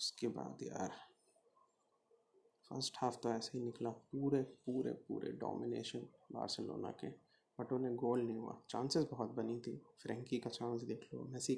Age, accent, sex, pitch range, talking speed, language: 20-39, native, male, 115-135 Hz, 155 wpm, Hindi